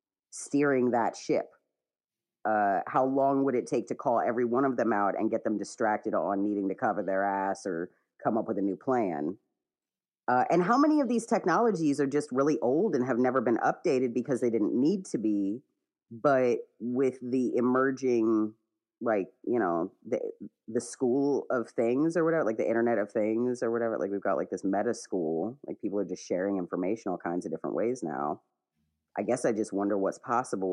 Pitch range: 110-145 Hz